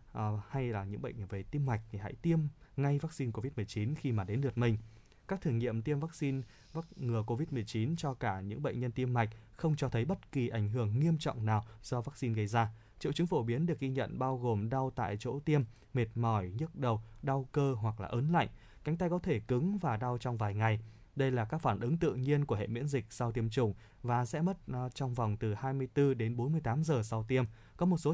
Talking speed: 240 wpm